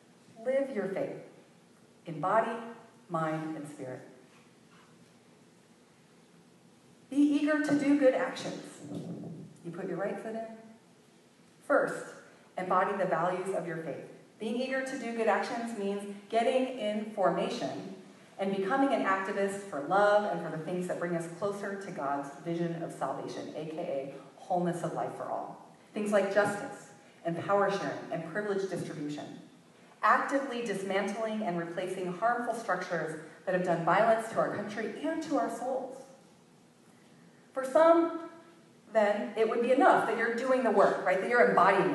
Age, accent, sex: 30-49, American, female